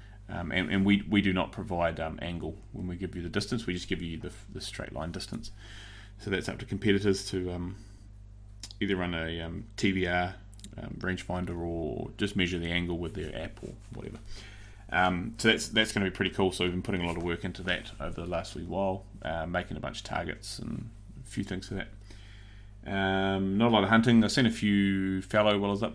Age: 20-39